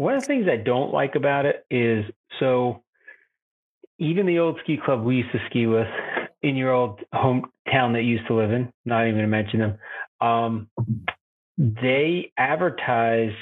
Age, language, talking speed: 30-49, English, 175 wpm